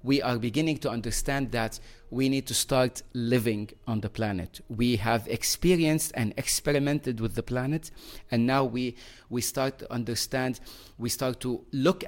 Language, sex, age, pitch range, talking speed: English, male, 30-49, 115-135 Hz, 165 wpm